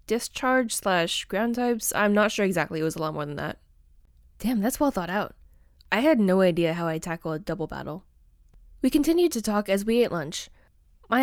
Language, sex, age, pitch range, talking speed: English, female, 10-29, 170-240 Hz, 210 wpm